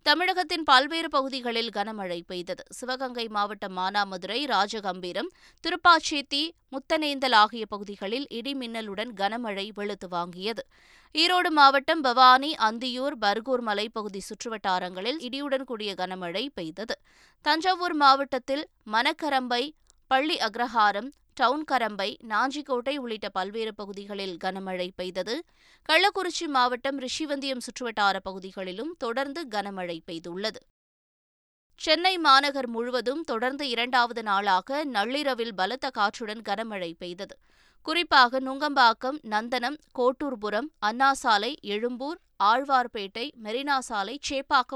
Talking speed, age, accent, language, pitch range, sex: 90 wpm, 20-39, native, Tamil, 205-275 Hz, female